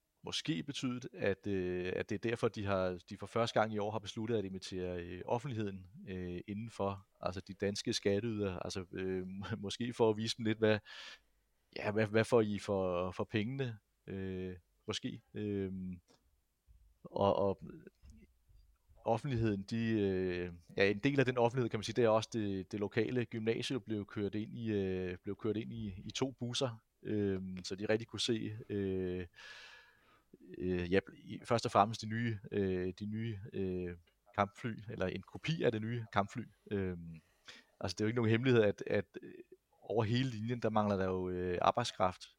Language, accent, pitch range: Danish, native, 95-115 Hz